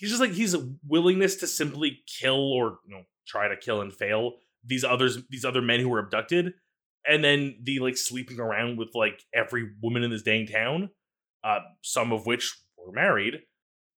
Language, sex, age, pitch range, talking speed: English, male, 20-39, 120-175 Hz, 195 wpm